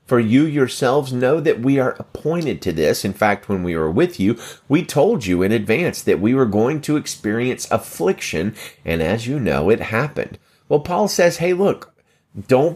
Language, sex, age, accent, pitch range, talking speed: English, male, 30-49, American, 95-135 Hz, 195 wpm